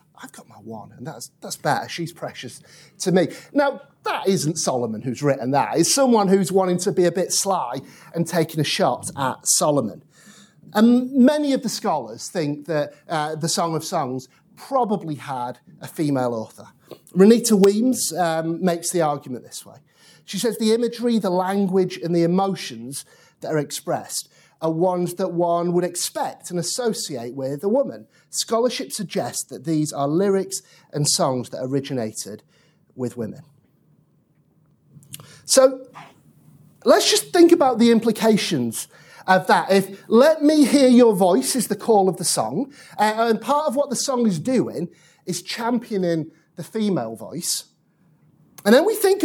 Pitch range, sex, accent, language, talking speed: 155-230 Hz, male, British, English, 160 wpm